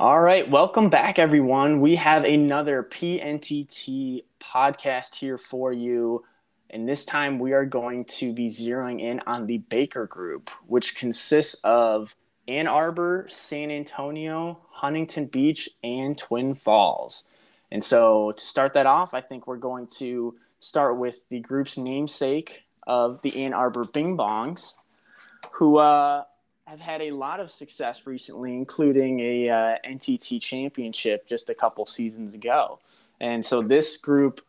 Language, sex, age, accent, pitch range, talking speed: English, male, 20-39, American, 120-150 Hz, 145 wpm